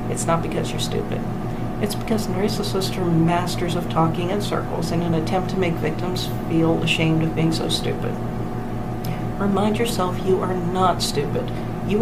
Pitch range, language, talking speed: 160-180 Hz, English, 170 wpm